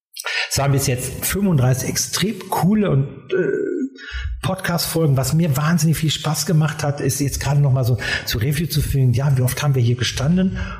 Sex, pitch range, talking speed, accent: male, 120-155 Hz, 190 wpm, German